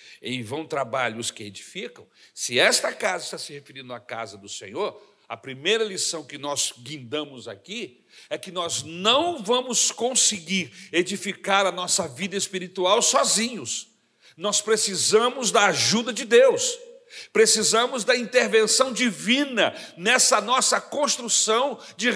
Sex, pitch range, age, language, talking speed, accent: male, 195-300 Hz, 60-79, Portuguese, 130 wpm, Brazilian